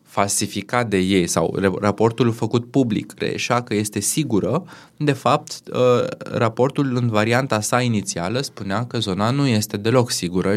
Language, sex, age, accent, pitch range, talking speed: Romanian, male, 20-39, native, 100-135 Hz, 140 wpm